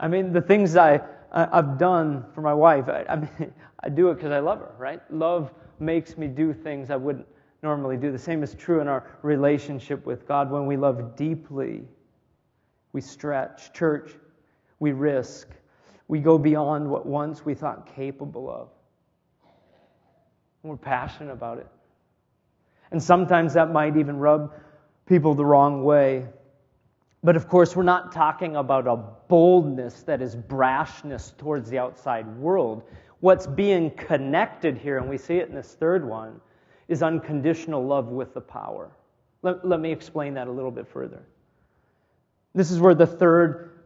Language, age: English, 40-59